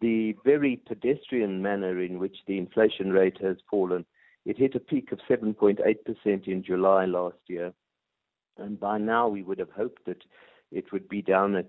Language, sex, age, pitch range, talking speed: English, male, 50-69, 90-105 Hz, 175 wpm